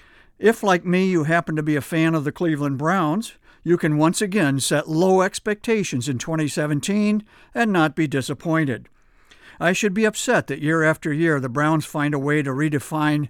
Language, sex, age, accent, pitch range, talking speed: English, male, 60-79, American, 145-180 Hz, 185 wpm